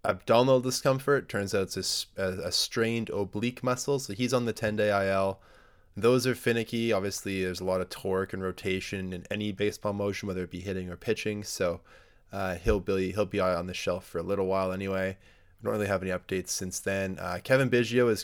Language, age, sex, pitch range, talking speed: English, 20-39, male, 95-115 Hz, 210 wpm